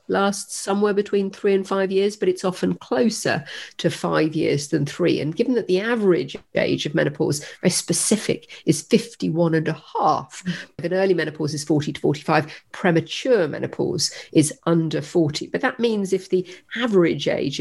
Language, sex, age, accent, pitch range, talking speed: English, female, 50-69, British, 155-190 Hz, 175 wpm